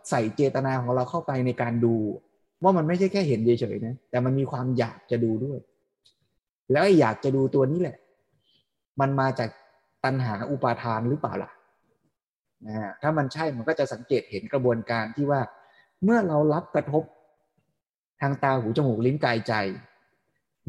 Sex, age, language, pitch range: male, 20-39, Thai, 115-150 Hz